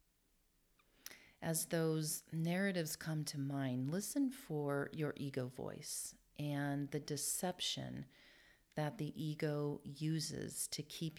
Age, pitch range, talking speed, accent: 40-59, 135-160 Hz, 105 wpm, American